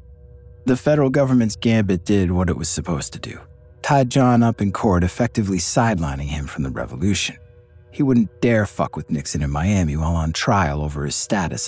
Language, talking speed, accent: English, 185 wpm, American